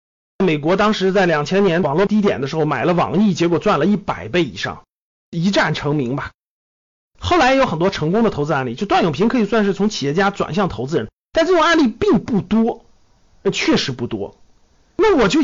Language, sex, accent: Chinese, male, native